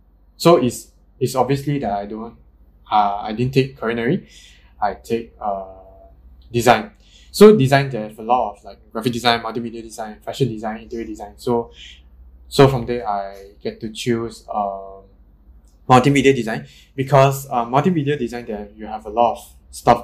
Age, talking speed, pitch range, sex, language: 20-39, 165 wpm, 95-130 Hz, male, English